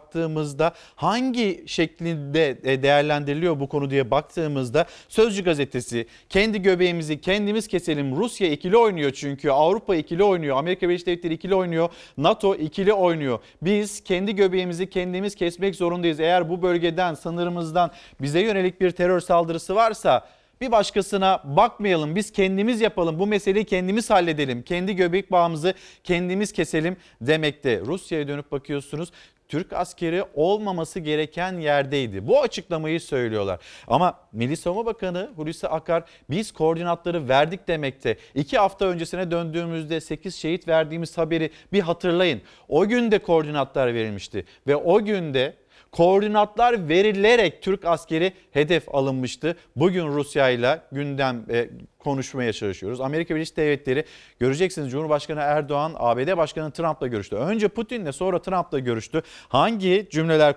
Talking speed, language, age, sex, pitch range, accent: 130 wpm, Turkish, 40-59, male, 145-190 Hz, native